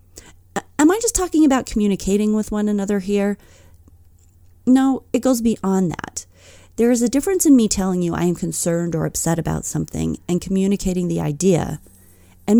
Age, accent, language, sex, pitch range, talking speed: 40-59, American, English, female, 150-215 Hz, 165 wpm